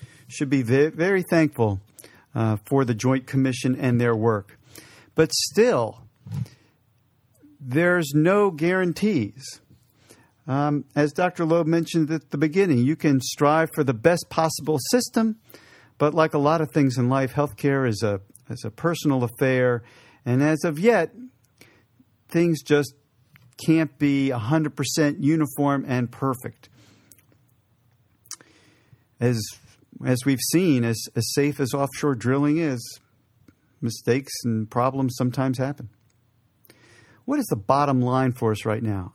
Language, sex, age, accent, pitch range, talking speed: English, male, 50-69, American, 115-150 Hz, 135 wpm